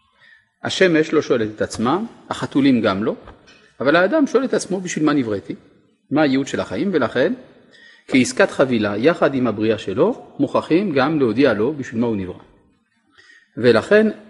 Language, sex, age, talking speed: Hebrew, male, 40-59, 150 wpm